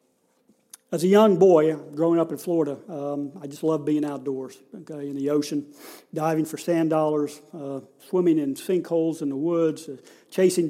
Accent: American